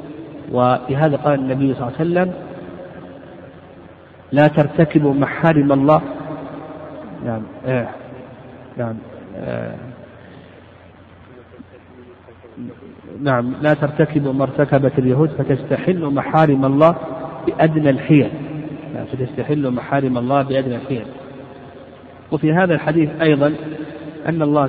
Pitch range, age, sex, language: 135-160 Hz, 50-69, male, Arabic